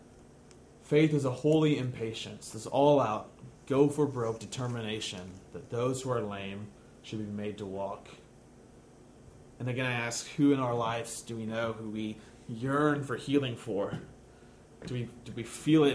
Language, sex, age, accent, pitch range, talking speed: English, male, 30-49, American, 120-150 Hz, 160 wpm